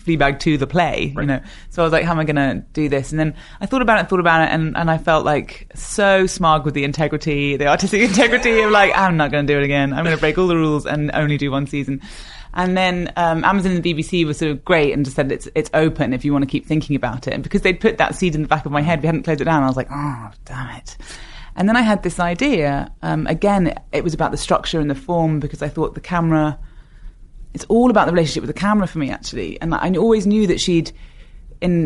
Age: 30-49